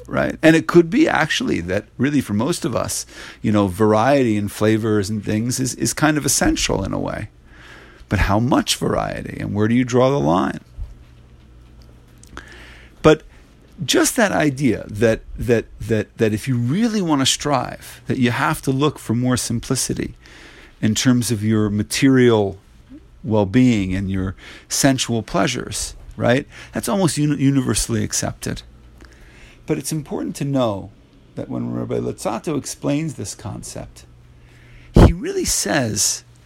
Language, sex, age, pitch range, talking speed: English, male, 50-69, 95-130 Hz, 150 wpm